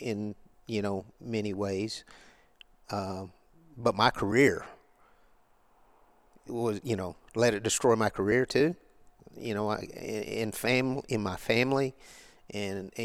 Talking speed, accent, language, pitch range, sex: 120 wpm, American, English, 105-120 Hz, male